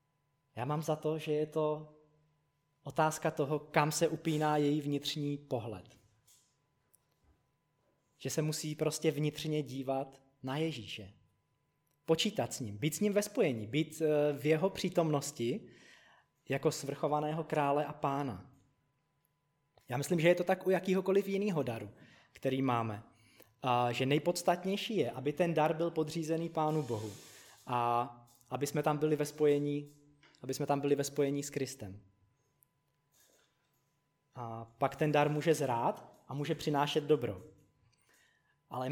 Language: Czech